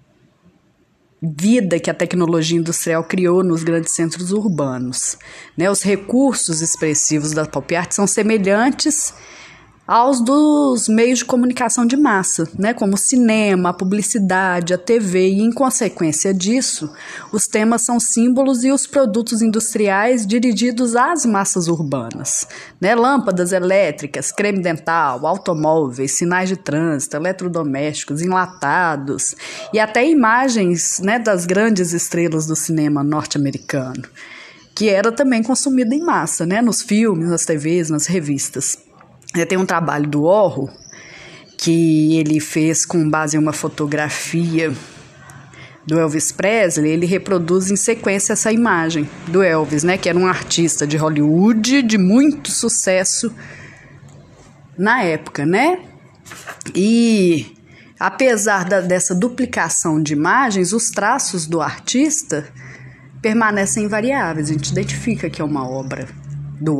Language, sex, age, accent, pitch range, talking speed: Portuguese, female, 20-39, Brazilian, 155-225 Hz, 125 wpm